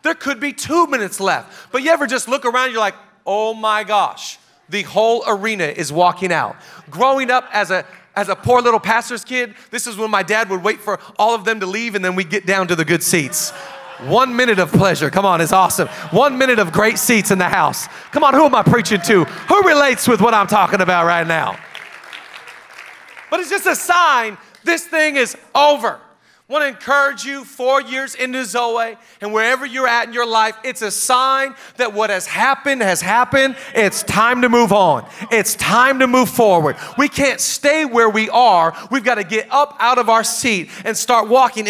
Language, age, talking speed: English, 40-59, 215 wpm